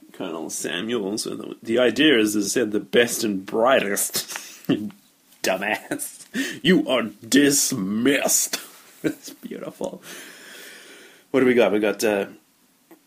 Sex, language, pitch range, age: male, English, 110-135 Hz, 30-49